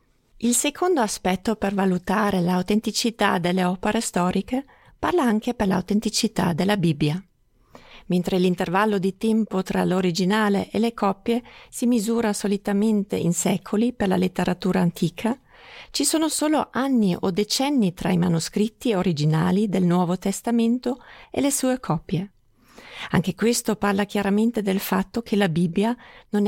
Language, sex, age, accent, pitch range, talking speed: Italian, female, 40-59, native, 180-225 Hz, 135 wpm